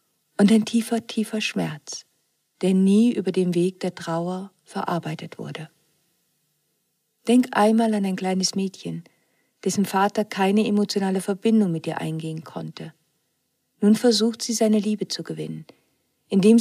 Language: German